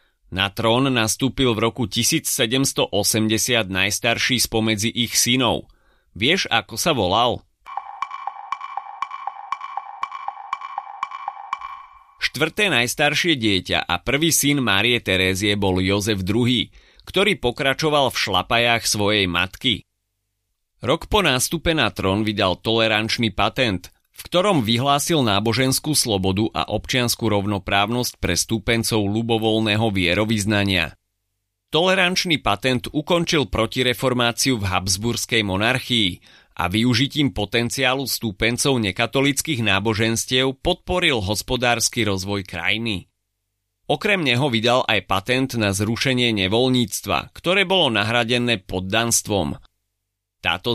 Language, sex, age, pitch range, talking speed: Slovak, male, 30-49, 100-135 Hz, 95 wpm